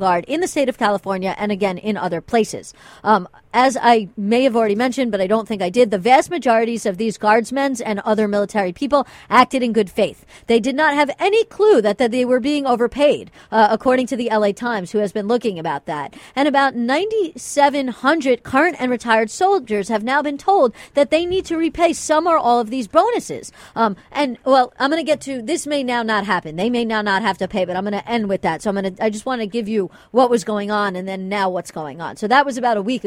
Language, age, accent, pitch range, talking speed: English, 40-59, American, 210-275 Hz, 245 wpm